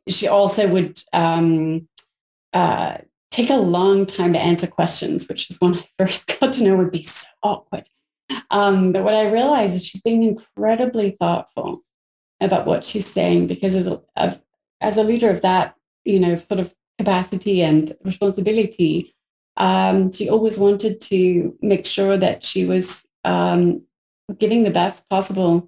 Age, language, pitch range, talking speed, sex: 30-49, English, 175-205 Hz, 155 wpm, female